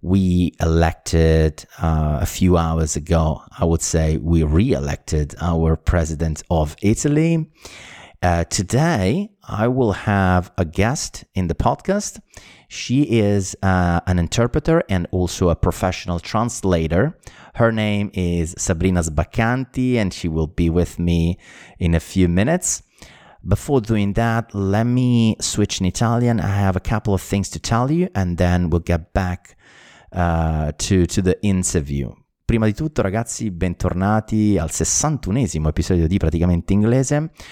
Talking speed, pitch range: 140 wpm, 80-100 Hz